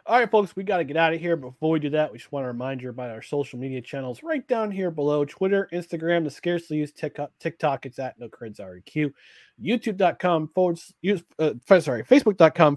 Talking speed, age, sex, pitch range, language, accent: 215 wpm, 30-49, male, 135-180 Hz, English, American